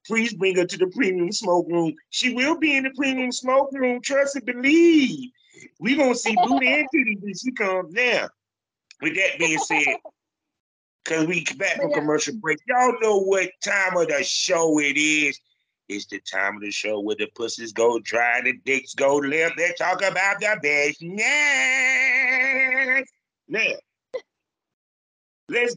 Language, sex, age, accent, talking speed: English, male, 30-49, American, 170 wpm